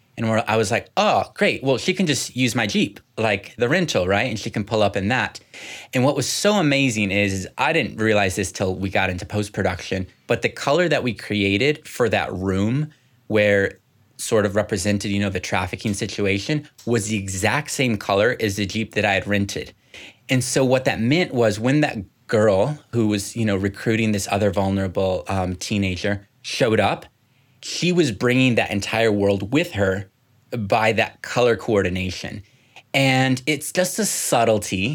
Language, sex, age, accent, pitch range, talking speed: English, male, 20-39, American, 100-130 Hz, 185 wpm